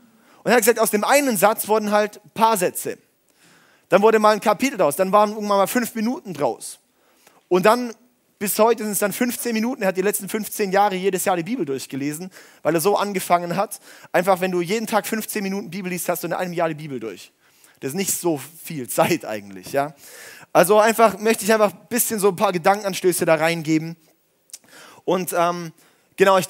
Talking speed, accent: 210 wpm, German